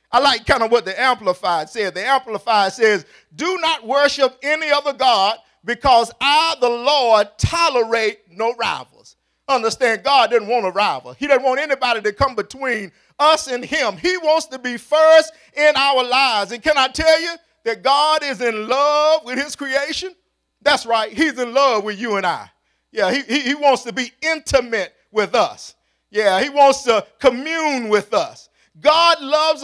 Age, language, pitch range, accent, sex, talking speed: 50-69, English, 235-305 Hz, American, male, 180 wpm